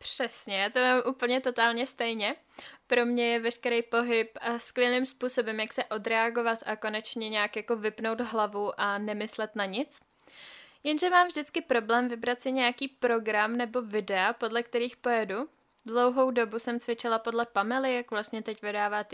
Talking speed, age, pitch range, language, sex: 155 wpm, 10-29, 225-260 Hz, Czech, female